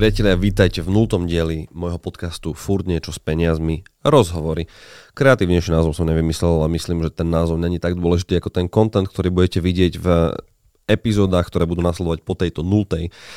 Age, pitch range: 30-49, 85-100 Hz